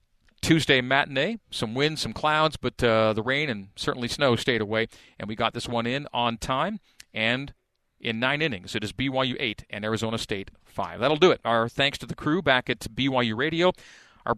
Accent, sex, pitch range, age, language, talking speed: American, male, 115-145 Hz, 40-59, English, 200 wpm